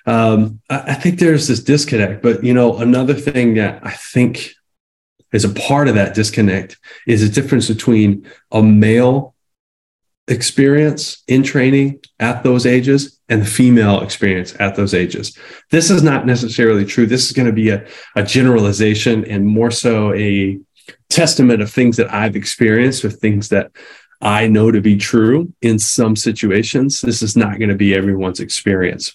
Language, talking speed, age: English, 165 wpm, 30-49